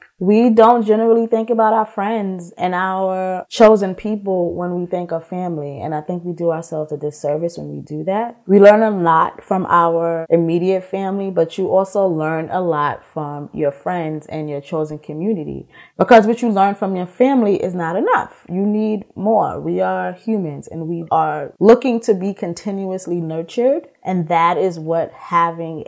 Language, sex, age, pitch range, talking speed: English, female, 20-39, 160-200 Hz, 180 wpm